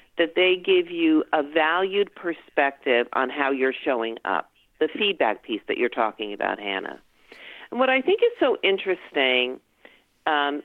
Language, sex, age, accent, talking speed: English, female, 50-69, American, 160 wpm